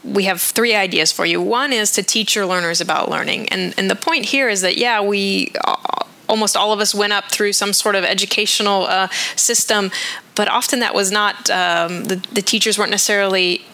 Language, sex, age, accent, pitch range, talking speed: English, female, 10-29, American, 180-210 Hz, 205 wpm